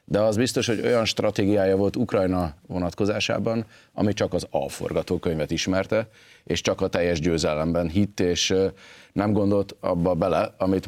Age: 30-49